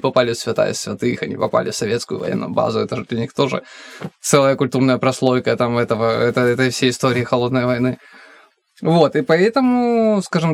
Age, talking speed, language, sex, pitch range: 20-39, 170 wpm, Russian, male, 125-145 Hz